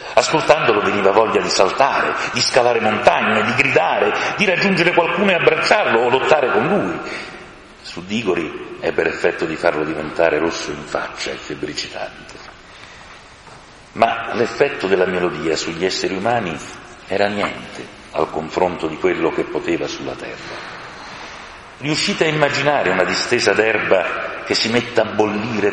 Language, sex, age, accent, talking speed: Italian, male, 40-59, native, 140 wpm